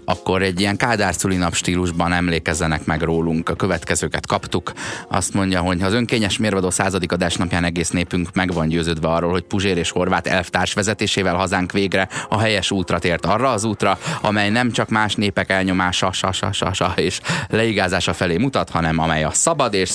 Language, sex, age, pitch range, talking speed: Hungarian, male, 20-39, 90-110 Hz, 170 wpm